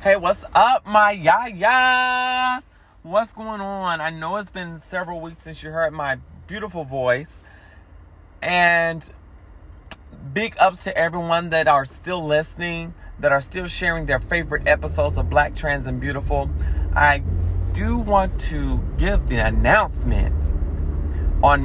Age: 30-49